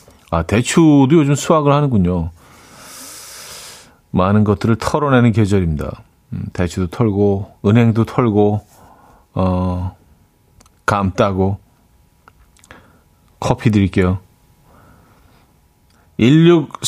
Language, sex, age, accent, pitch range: Korean, male, 40-59, native, 95-135 Hz